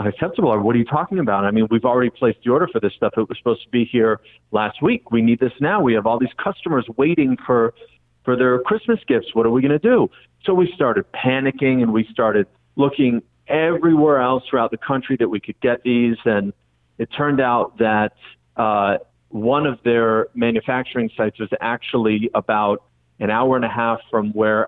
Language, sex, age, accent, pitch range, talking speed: English, male, 40-59, American, 110-130 Hz, 205 wpm